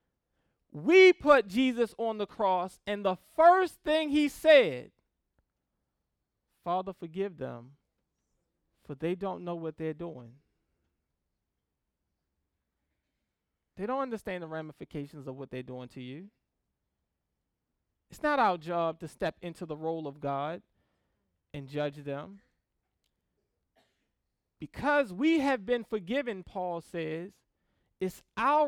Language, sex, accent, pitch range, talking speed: English, male, American, 150-235 Hz, 115 wpm